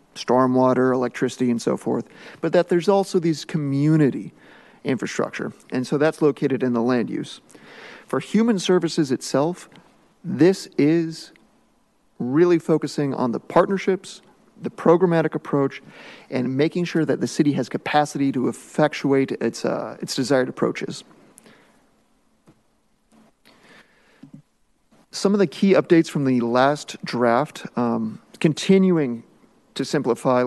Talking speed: 120 wpm